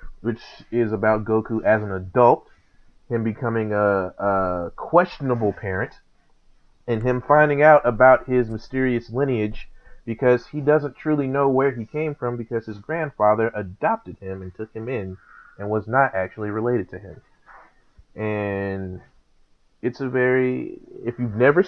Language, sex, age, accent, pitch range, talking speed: English, male, 30-49, American, 95-120 Hz, 145 wpm